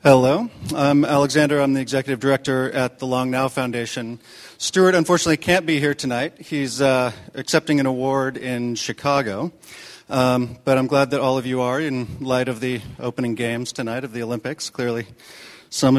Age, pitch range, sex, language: 40-59, 125-160 Hz, male, English